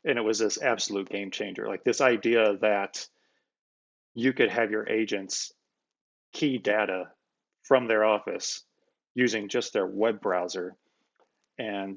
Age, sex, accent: 30-49, male, American